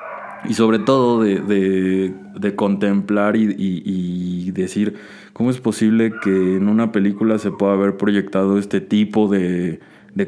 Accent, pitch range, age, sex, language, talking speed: Mexican, 95-110 Hz, 20-39, male, Spanish, 150 wpm